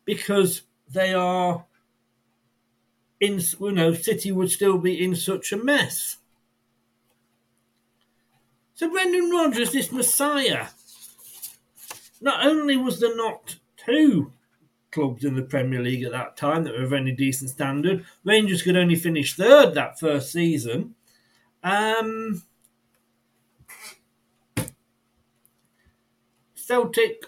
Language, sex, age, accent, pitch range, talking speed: English, male, 60-79, British, 120-200 Hz, 110 wpm